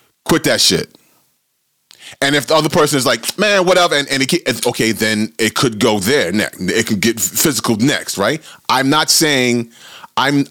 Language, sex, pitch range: English, male, 100-145 Hz